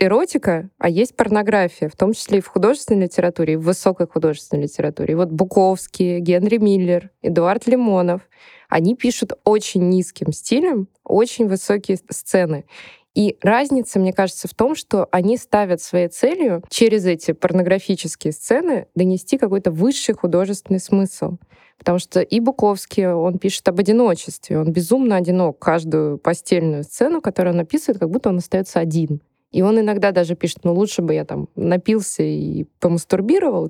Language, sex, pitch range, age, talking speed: Russian, female, 170-210 Hz, 20-39, 155 wpm